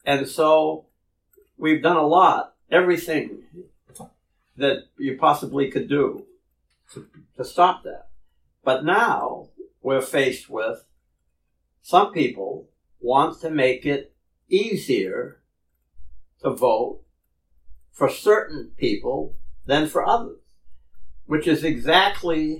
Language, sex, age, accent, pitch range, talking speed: English, male, 60-79, American, 135-205 Hz, 100 wpm